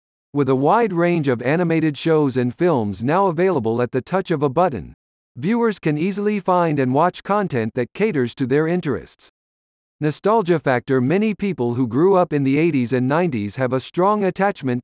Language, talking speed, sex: English, 180 wpm, male